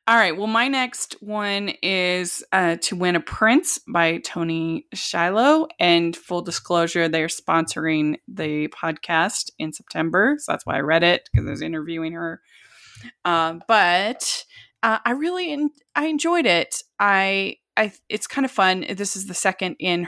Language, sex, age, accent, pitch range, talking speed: English, female, 20-39, American, 160-205 Hz, 165 wpm